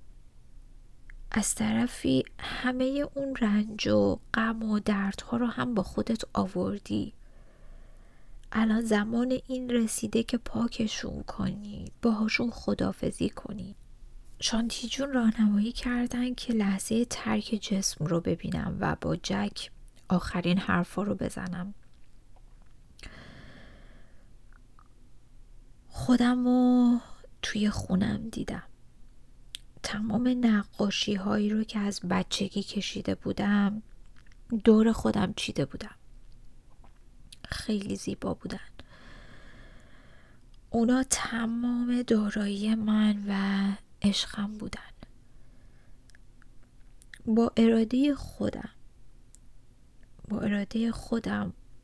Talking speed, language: 85 wpm, Persian